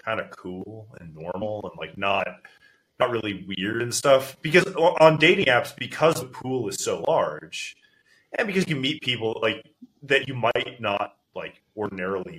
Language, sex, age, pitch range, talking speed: English, male, 20-39, 100-160 Hz, 170 wpm